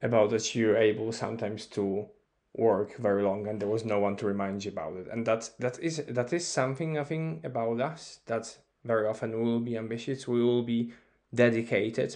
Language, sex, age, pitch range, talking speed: English, male, 10-29, 115-135 Hz, 200 wpm